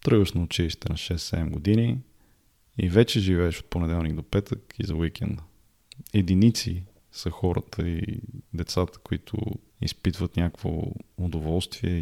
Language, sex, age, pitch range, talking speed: Bulgarian, male, 20-39, 85-110 Hz, 125 wpm